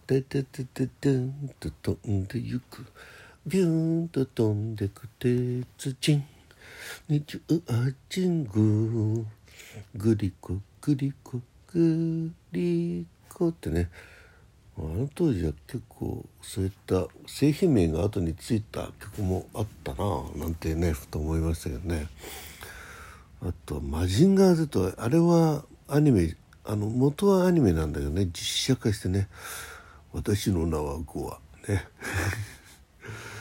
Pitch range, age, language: 85-140 Hz, 60-79, Japanese